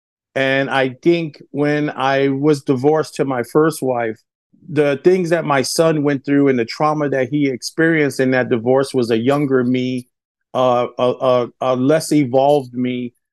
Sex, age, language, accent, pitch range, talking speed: male, 40-59, English, American, 130-150 Hz, 170 wpm